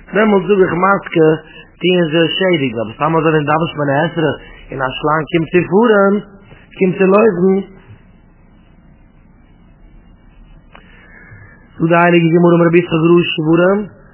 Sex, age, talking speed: male, 30-49, 55 wpm